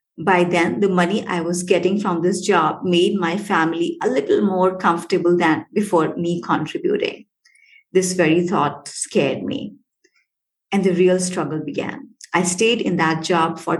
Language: English